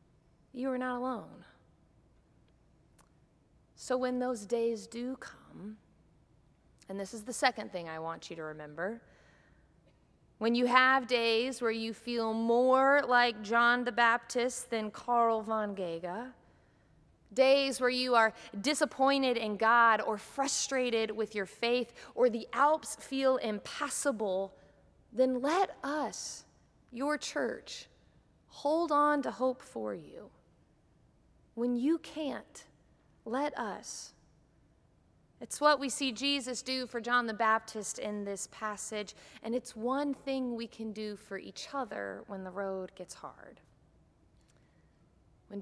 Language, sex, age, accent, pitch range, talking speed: English, female, 30-49, American, 210-260 Hz, 130 wpm